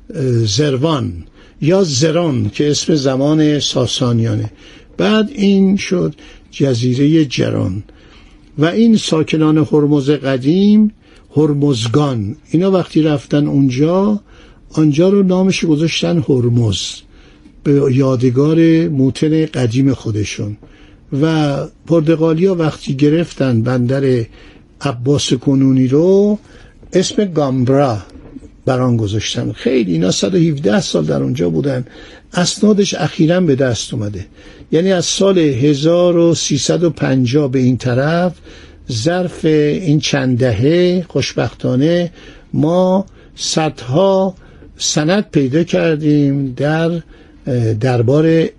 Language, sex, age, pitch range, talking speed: Persian, male, 60-79, 125-165 Hz, 95 wpm